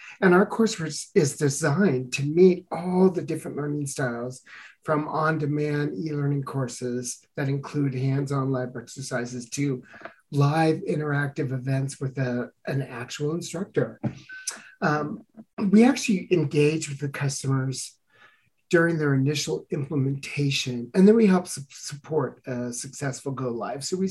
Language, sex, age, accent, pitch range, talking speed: English, male, 40-59, American, 135-170 Hz, 130 wpm